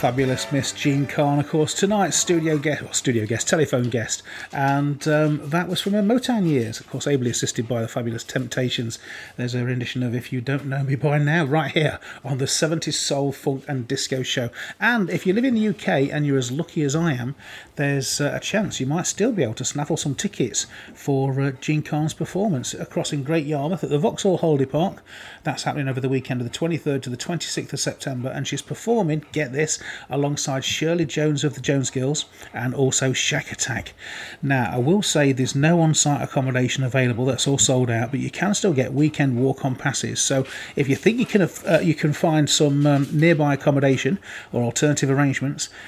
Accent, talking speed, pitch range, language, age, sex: British, 205 wpm, 130-155 Hz, English, 30-49, male